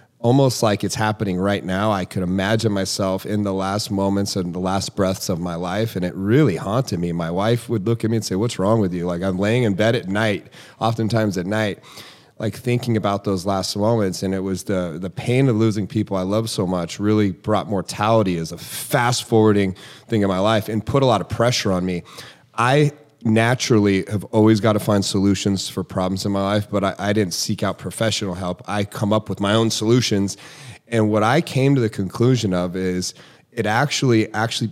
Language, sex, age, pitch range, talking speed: English, male, 30-49, 100-130 Hz, 220 wpm